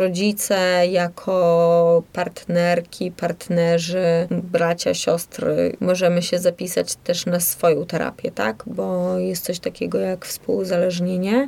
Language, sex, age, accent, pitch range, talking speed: Polish, female, 20-39, native, 180-205 Hz, 105 wpm